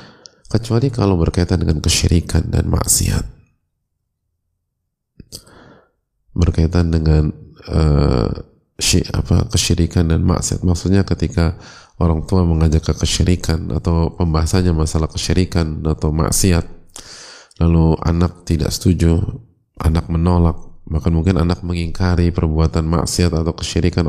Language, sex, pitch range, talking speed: Indonesian, male, 80-95 Hz, 105 wpm